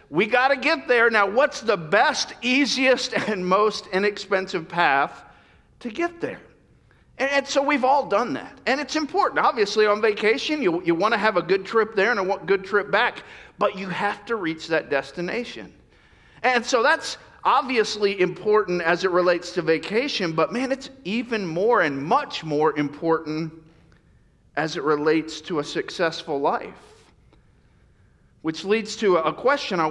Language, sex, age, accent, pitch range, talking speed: English, male, 50-69, American, 165-225 Hz, 165 wpm